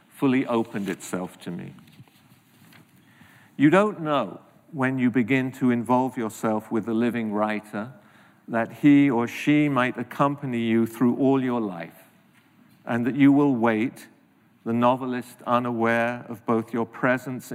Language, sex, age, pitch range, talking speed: English, male, 50-69, 115-135 Hz, 140 wpm